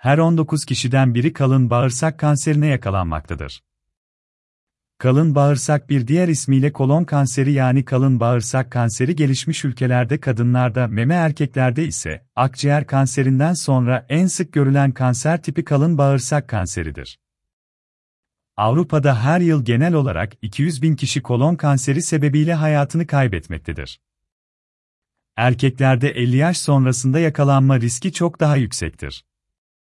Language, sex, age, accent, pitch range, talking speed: Turkish, male, 40-59, native, 90-145 Hz, 115 wpm